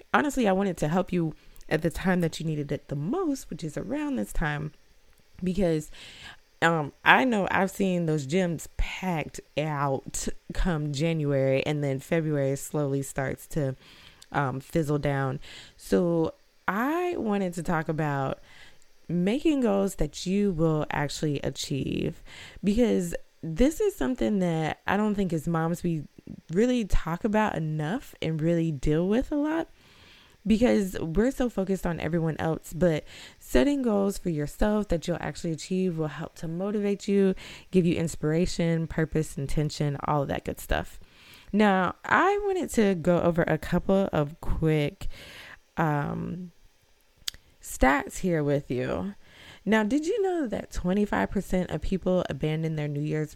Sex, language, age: female, English, 20-39